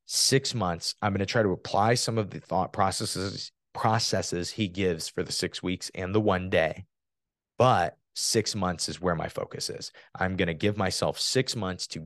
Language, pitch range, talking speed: English, 90-125 Hz, 200 wpm